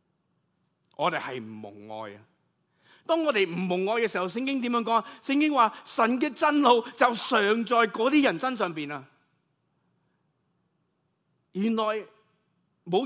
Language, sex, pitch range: Chinese, male, 135-200 Hz